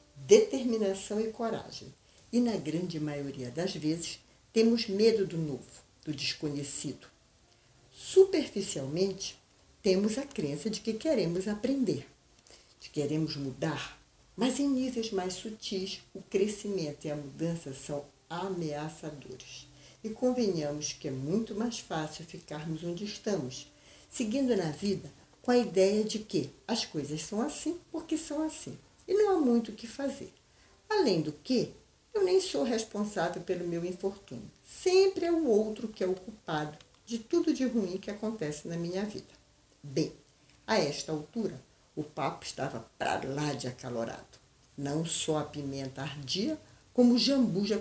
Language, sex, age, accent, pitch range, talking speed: Portuguese, female, 60-79, Brazilian, 150-225 Hz, 150 wpm